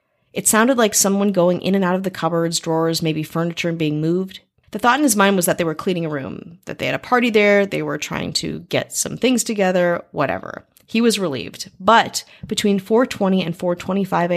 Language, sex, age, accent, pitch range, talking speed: English, female, 30-49, American, 155-190 Hz, 215 wpm